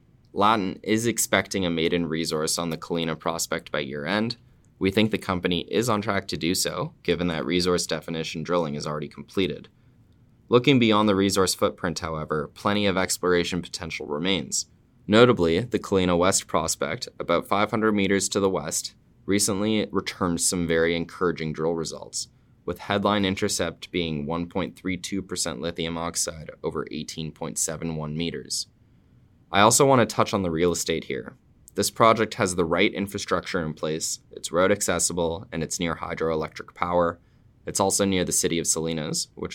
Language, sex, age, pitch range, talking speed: English, male, 20-39, 80-105 Hz, 155 wpm